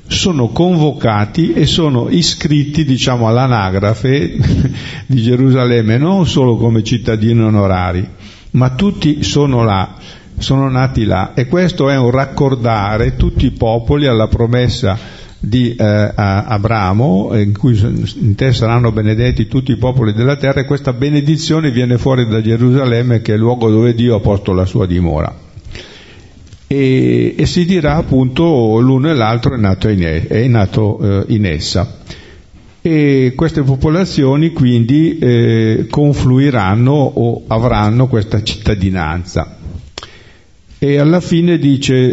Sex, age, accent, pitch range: male, 50-69, native, 105-140 Hz